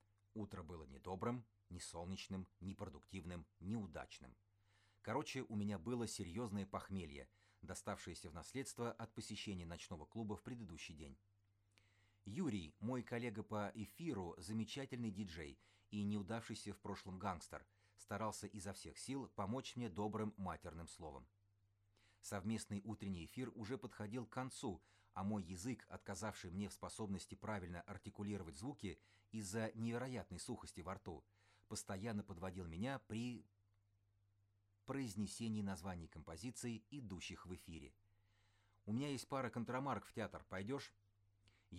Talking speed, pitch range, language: 120 wpm, 95-110 Hz, Russian